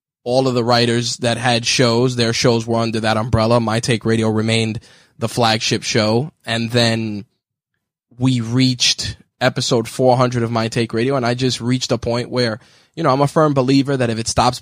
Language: English